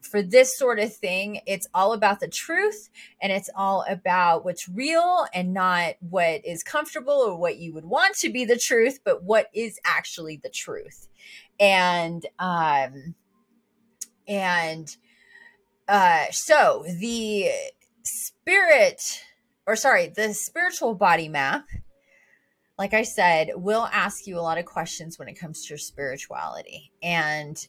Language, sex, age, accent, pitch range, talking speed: English, female, 30-49, American, 180-265 Hz, 145 wpm